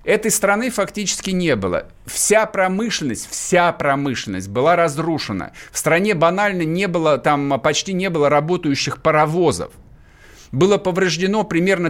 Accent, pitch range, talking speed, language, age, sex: native, 140-185 Hz, 125 wpm, Russian, 50-69, male